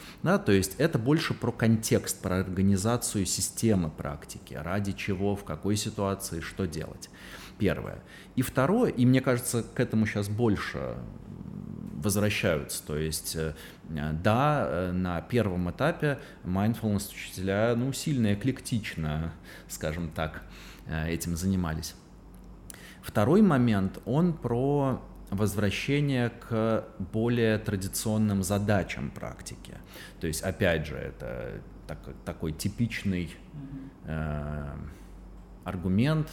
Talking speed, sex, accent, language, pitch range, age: 100 wpm, male, native, Russian, 90-120 Hz, 30-49